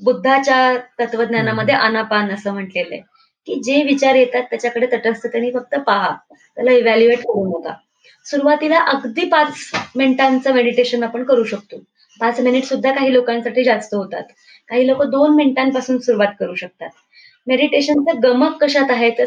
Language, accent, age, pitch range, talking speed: Marathi, native, 20-39, 215-270 Hz, 145 wpm